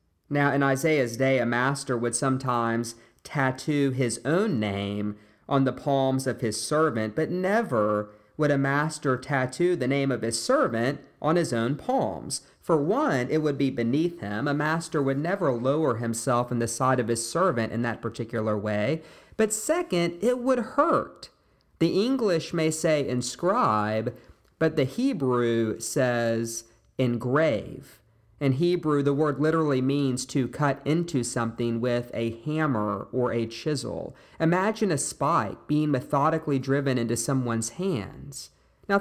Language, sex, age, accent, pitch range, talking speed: English, male, 40-59, American, 115-165 Hz, 150 wpm